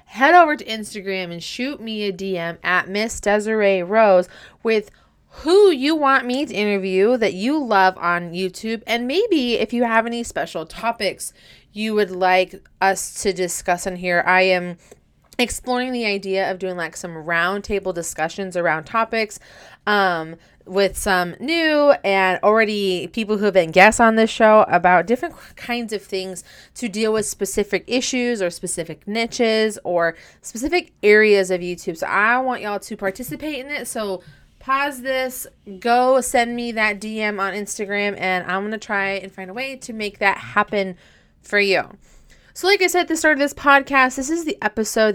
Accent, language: American, English